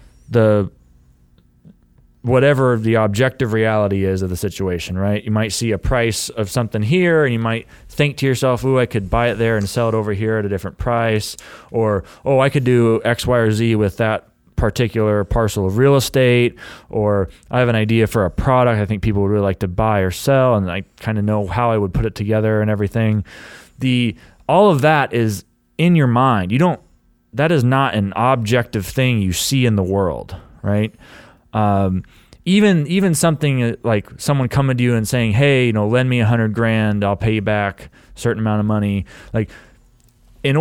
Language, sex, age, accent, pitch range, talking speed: English, male, 30-49, American, 105-130 Hz, 205 wpm